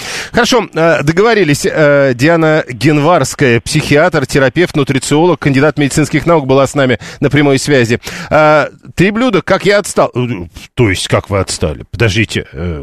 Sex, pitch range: male, 130-175 Hz